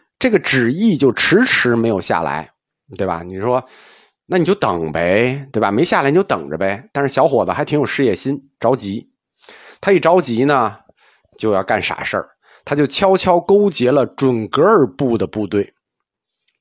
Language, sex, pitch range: Chinese, male, 115-190 Hz